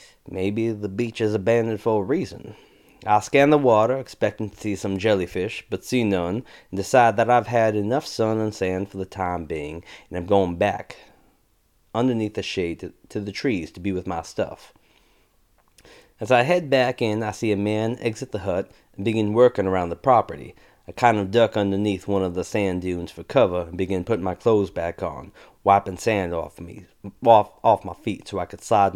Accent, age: American, 30-49